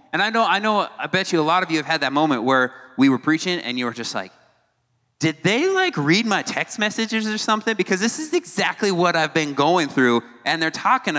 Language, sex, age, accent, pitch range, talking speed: English, male, 30-49, American, 145-195 Hz, 245 wpm